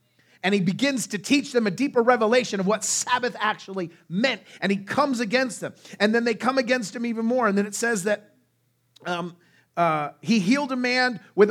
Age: 30-49